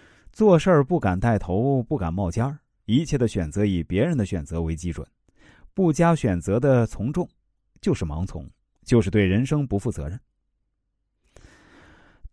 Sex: male